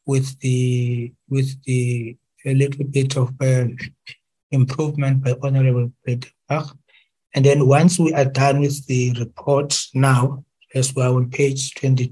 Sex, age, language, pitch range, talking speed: male, 60-79, English, 130-140 Hz, 150 wpm